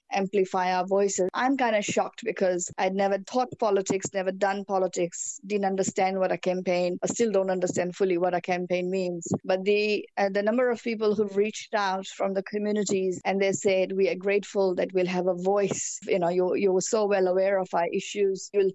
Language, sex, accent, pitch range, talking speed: English, female, Indian, 180-205 Hz, 210 wpm